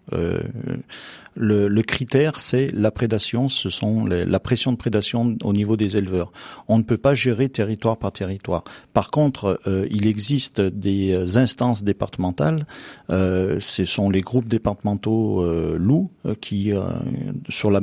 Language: French